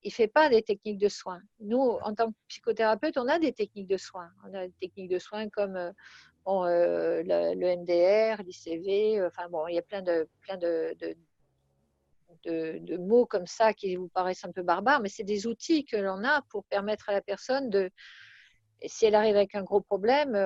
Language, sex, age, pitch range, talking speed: French, female, 50-69, 185-230 Hz, 220 wpm